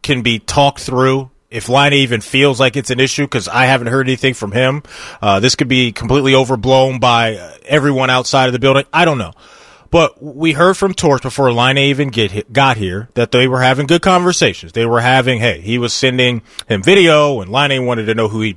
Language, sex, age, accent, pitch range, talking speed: English, male, 30-49, American, 125-155 Hz, 215 wpm